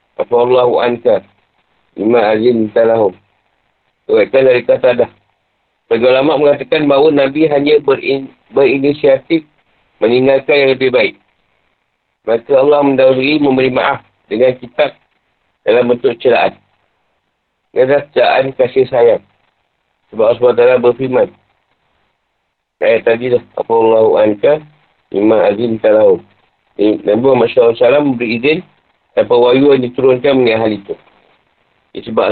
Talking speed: 110 wpm